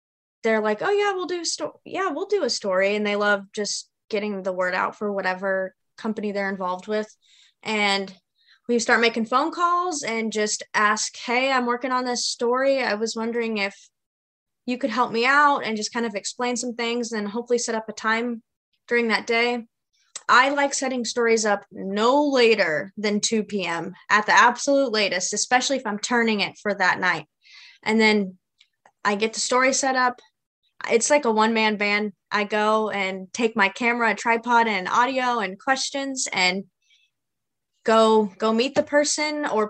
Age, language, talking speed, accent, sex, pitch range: 20-39, English, 175 wpm, American, female, 200-245 Hz